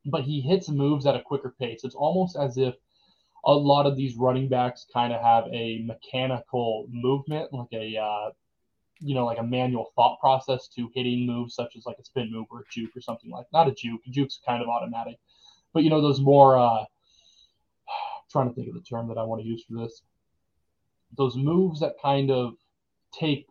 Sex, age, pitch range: male, 20-39, 115-140 Hz